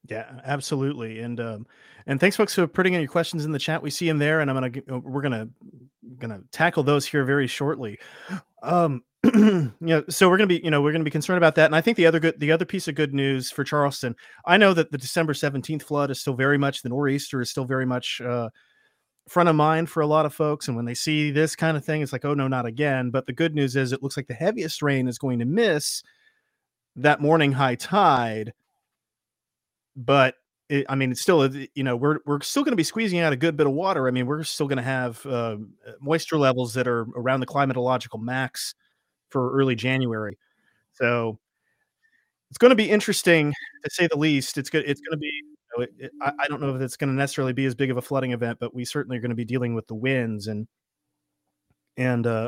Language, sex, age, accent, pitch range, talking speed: English, male, 30-49, American, 125-155 Hz, 235 wpm